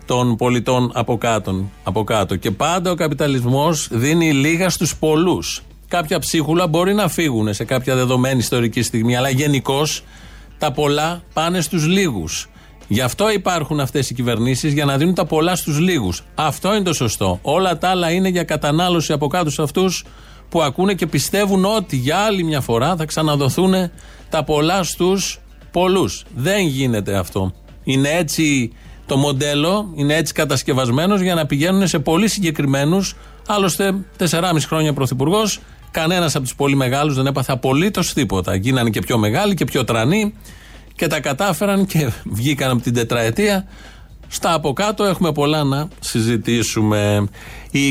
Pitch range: 120-175 Hz